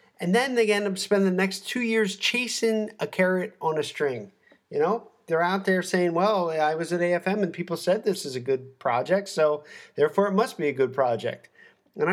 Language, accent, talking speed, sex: English, American, 220 wpm, male